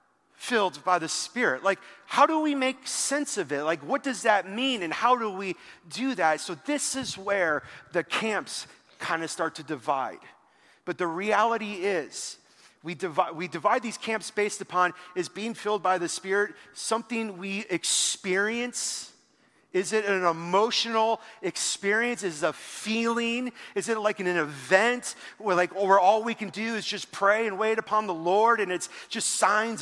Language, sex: English, male